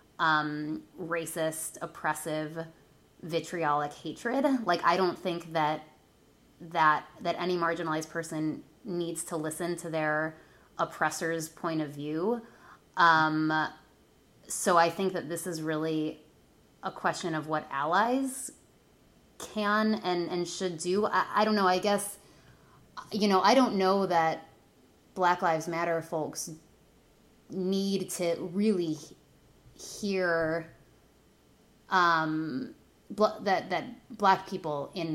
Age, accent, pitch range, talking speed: 20-39, American, 155-185 Hz, 115 wpm